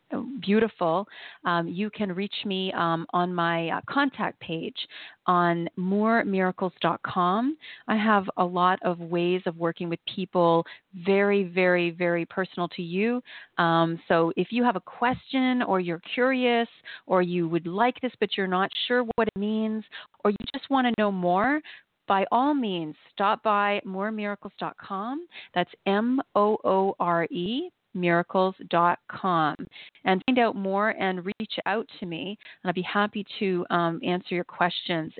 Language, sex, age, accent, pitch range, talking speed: English, female, 40-59, American, 180-220 Hz, 150 wpm